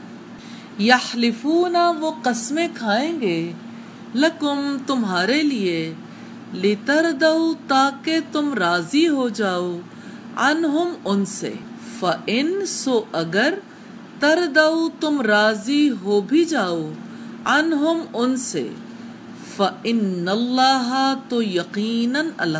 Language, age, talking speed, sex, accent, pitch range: English, 50-69, 80 wpm, female, Indian, 210-295 Hz